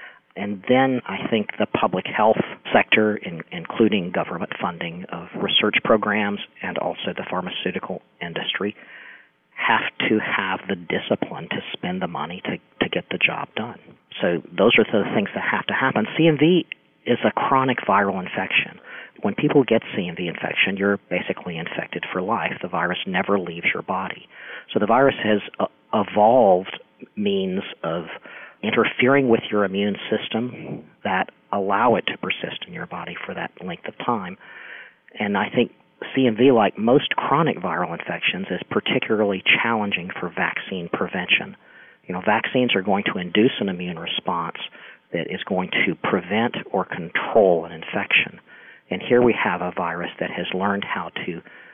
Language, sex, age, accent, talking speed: English, male, 40-59, American, 155 wpm